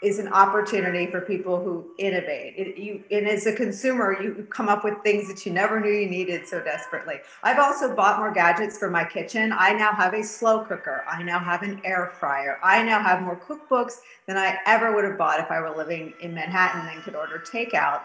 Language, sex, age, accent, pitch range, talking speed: English, female, 40-59, American, 180-220 Hz, 225 wpm